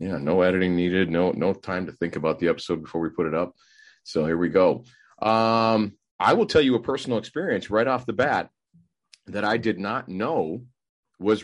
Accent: American